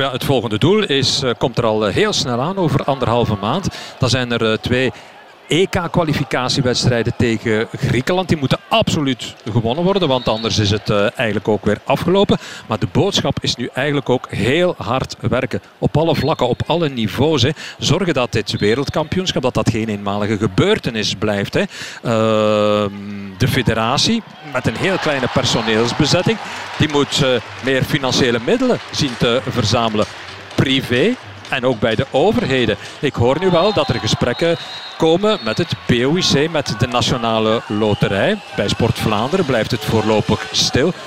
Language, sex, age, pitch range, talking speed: Dutch, male, 50-69, 110-155 Hz, 150 wpm